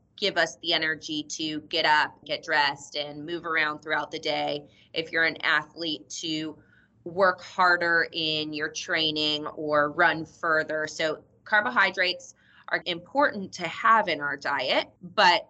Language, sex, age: English, female, 20-39